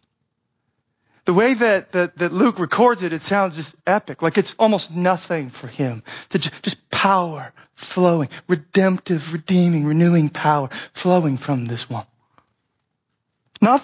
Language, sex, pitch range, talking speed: English, male, 140-200 Hz, 130 wpm